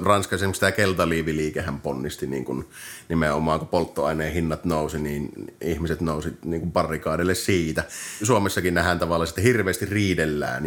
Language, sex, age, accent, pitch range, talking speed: Finnish, male, 30-49, native, 85-105 Hz, 130 wpm